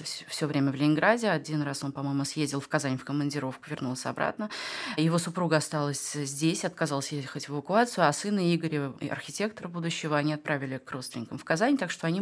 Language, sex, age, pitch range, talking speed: Russian, female, 20-39, 150-175 Hz, 180 wpm